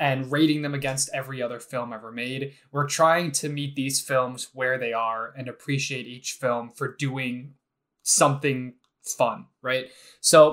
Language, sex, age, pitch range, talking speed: English, male, 20-39, 130-155 Hz, 160 wpm